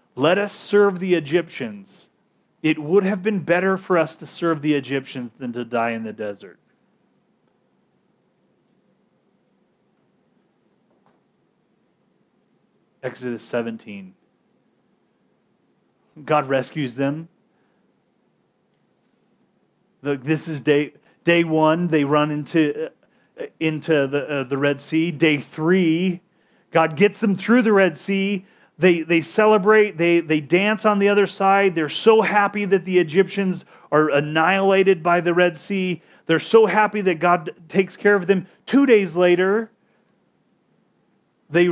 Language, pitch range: English, 155-195 Hz